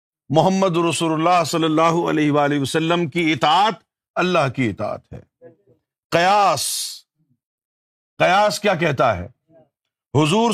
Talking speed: 115 wpm